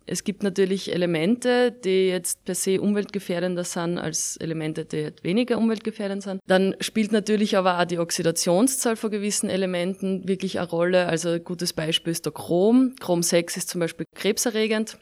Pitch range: 165-195 Hz